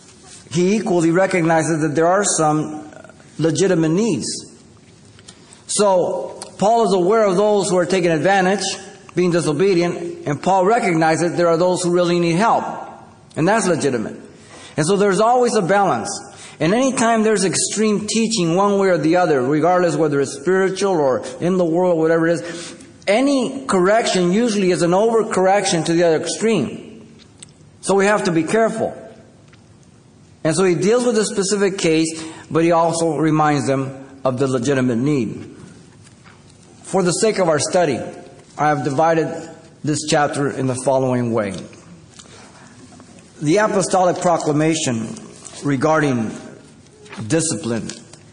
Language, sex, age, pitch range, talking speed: English, male, 50-69, 150-190 Hz, 140 wpm